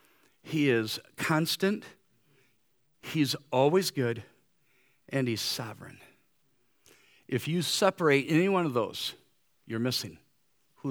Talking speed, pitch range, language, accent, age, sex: 105 wpm, 130-170 Hz, English, American, 50-69, male